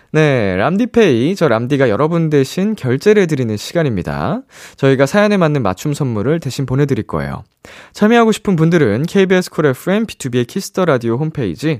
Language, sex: Korean, male